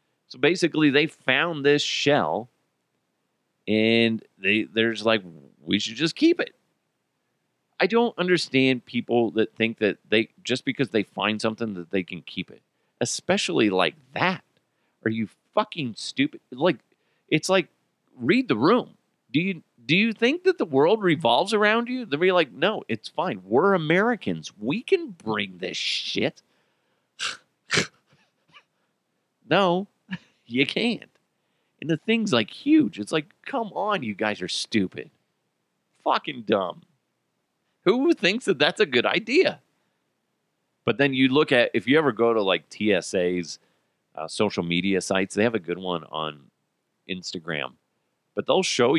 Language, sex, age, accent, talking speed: English, male, 40-59, American, 150 wpm